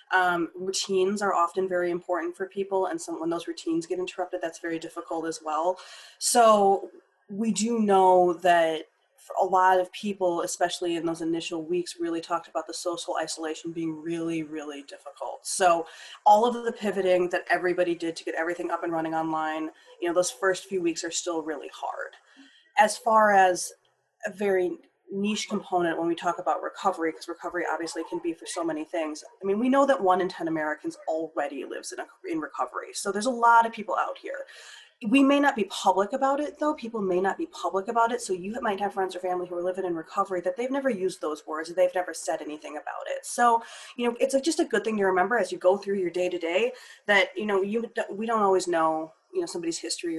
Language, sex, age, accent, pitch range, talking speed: English, female, 20-39, American, 170-215 Hz, 220 wpm